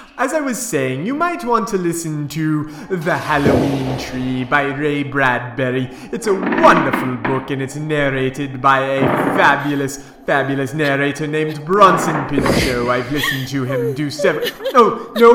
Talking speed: 155 wpm